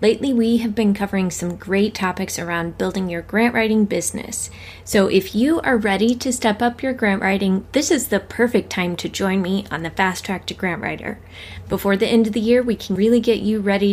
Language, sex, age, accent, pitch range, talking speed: English, female, 20-39, American, 185-230 Hz, 225 wpm